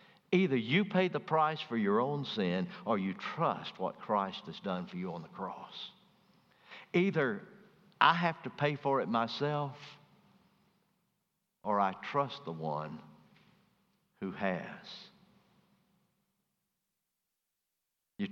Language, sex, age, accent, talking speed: English, male, 60-79, American, 120 wpm